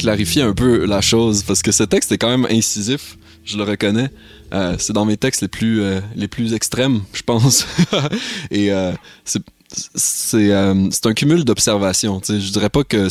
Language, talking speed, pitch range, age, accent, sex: French, 200 wpm, 95-115 Hz, 20-39, Canadian, male